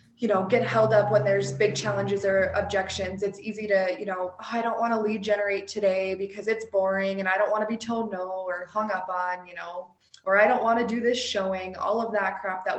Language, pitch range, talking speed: English, 190-220 Hz, 250 wpm